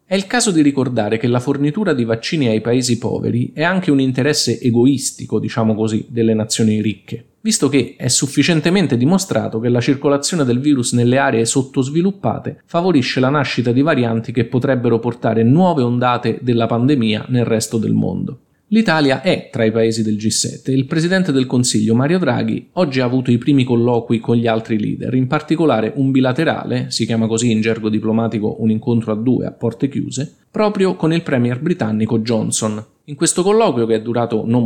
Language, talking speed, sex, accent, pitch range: Italian, 185 wpm, male, native, 115-140 Hz